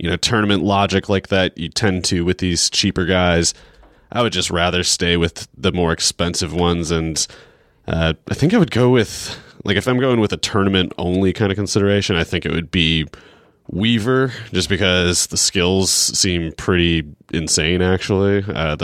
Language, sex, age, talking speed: English, male, 20-39, 180 wpm